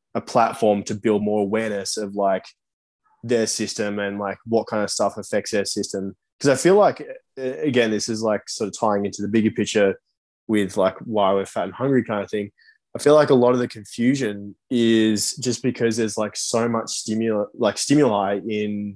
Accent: Australian